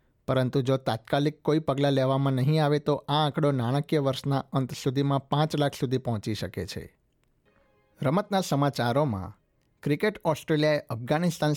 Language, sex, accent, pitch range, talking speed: Gujarati, male, native, 120-145 Hz, 135 wpm